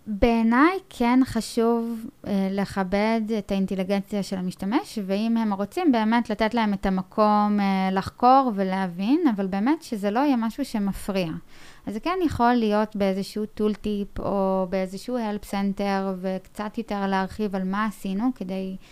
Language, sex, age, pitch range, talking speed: Hebrew, female, 20-39, 190-230 Hz, 145 wpm